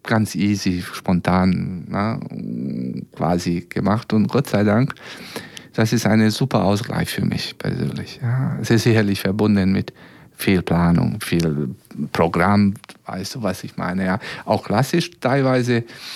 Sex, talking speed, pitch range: male, 135 wpm, 95-120 Hz